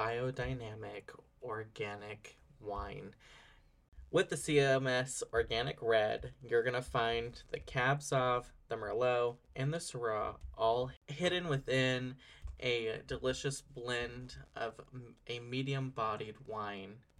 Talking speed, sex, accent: 110 wpm, male, American